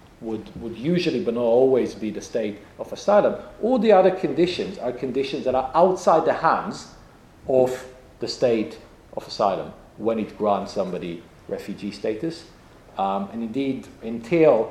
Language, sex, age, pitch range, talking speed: English, male, 40-59, 110-155 Hz, 150 wpm